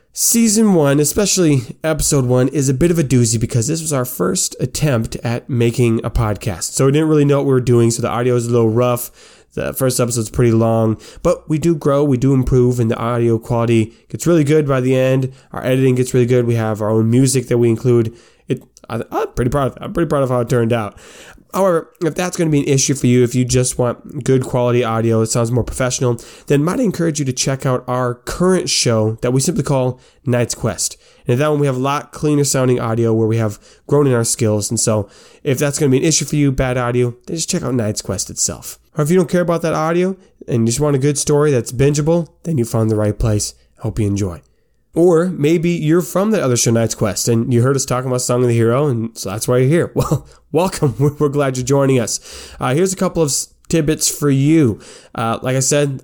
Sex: male